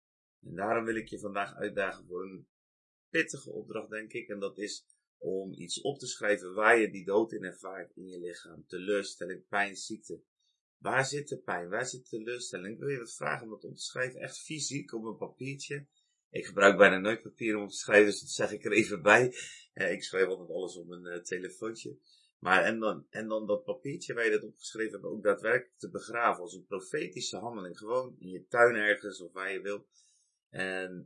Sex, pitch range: male, 95-135 Hz